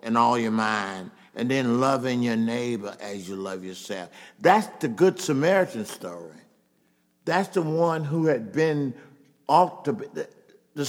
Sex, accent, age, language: male, American, 50-69, English